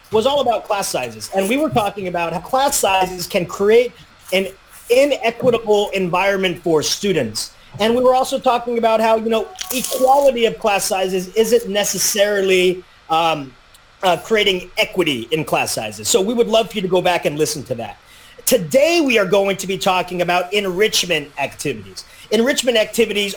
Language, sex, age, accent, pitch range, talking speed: English, male, 30-49, American, 185-235 Hz, 170 wpm